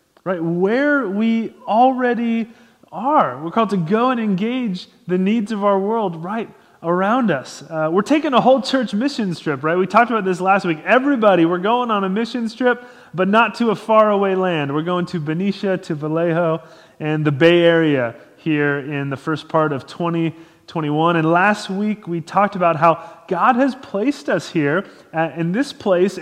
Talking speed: 180 wpm